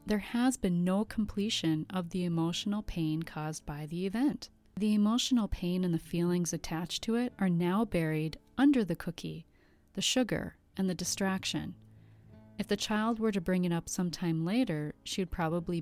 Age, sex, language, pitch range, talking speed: 30-49, female, English, 160-195 Hz, 170 wpm